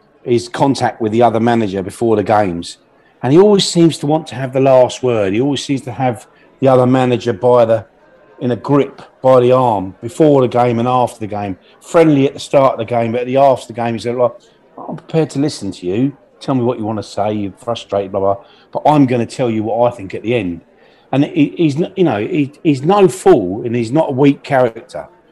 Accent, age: British, 40-59